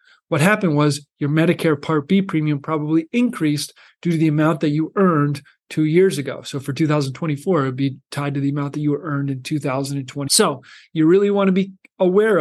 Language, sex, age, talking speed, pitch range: English, male, 40-59, 205 wpm, 145-175 Hz